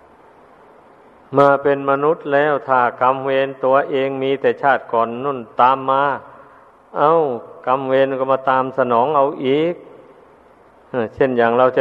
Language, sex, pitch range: Thai, male, 125-135 Hz